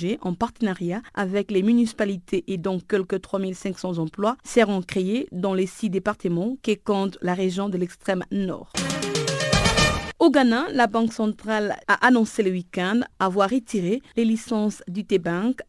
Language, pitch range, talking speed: French, 185-225 Hz, 145 wpm